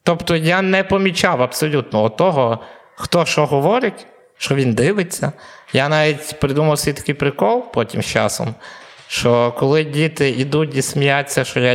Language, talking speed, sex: Ukrainian, 150 wpm, male